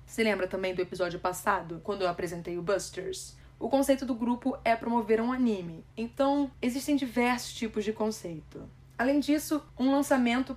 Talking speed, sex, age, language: 165 wpm, female, 10-29, Portuguese